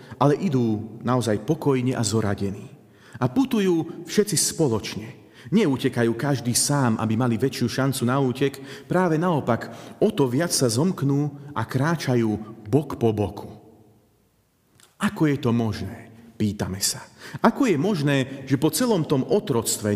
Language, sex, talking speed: Slovak, male, 135 wpm